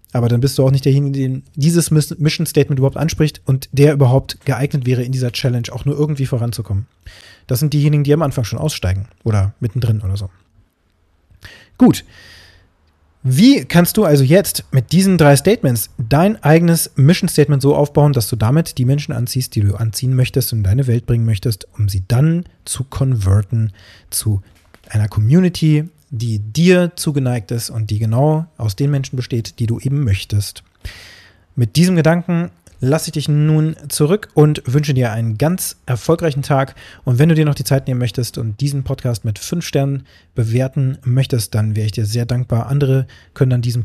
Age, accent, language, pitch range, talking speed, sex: 30-49, German, German, 110-145 Hz, 180 wpm, male